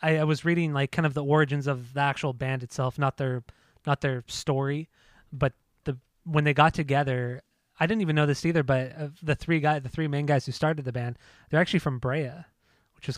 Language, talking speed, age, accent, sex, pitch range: English, 225 wpm, 20-39, American, male, 135-165 Hz